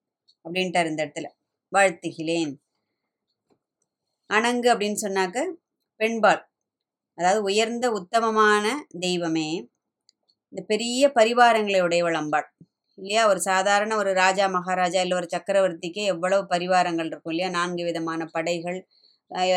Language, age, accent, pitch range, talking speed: Tamil, 20-39, native, 170-200 Hz, 100 wpm